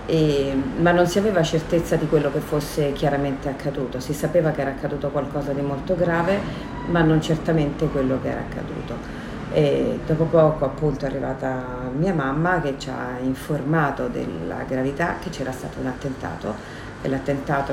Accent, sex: native, female